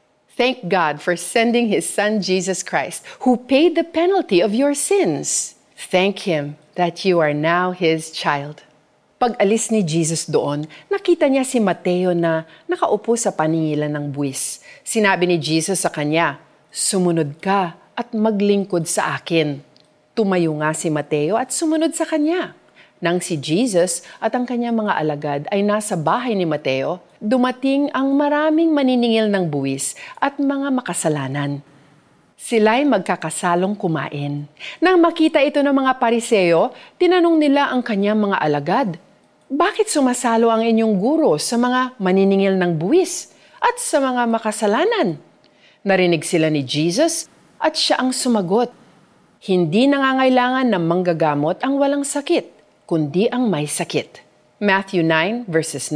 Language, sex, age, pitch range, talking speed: Filipino, female, 40-59, 165-255 Hz, 140 wpm